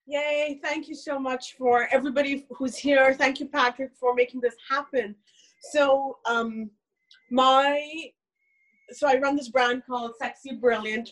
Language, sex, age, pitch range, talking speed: English, female, 20-39, 225-270 Hz, 145 wpm